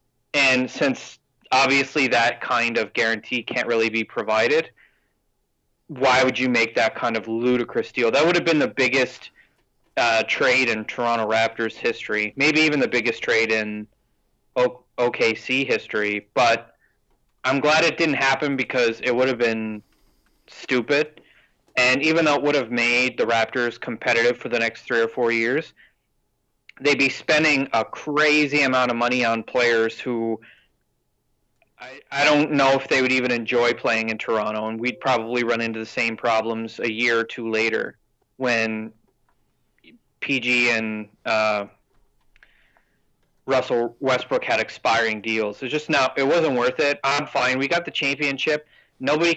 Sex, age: male, 30-49